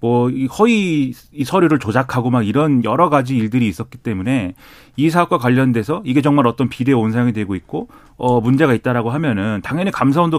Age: 30-49